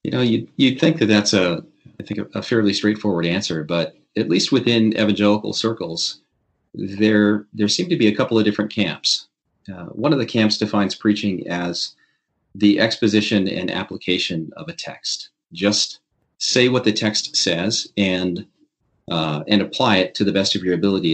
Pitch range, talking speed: 95-115 Hz, 175 wpm